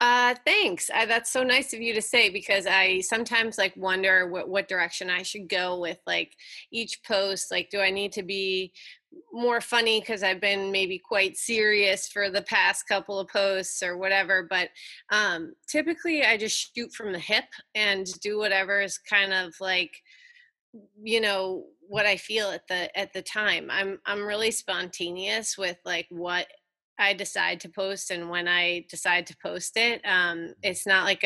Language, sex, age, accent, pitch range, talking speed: English, female, 30-49, American, 180-220 Hz, 180 wpm